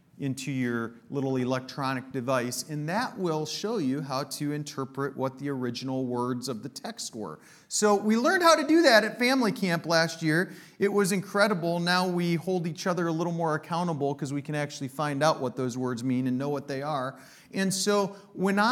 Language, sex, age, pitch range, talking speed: English, male, 40-59, 140-190 Hz, 200 wpm